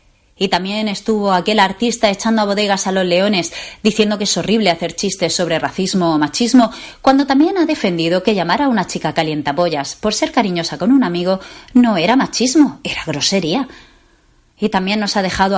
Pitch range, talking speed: 175-240 Hz, 180 wpm